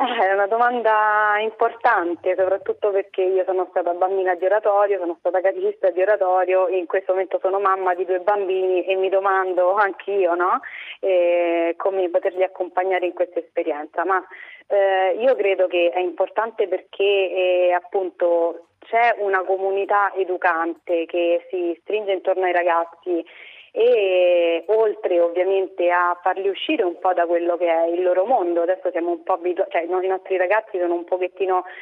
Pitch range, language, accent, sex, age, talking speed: 180-200 Hz, Italian, native, female, 30-49, 165 wpm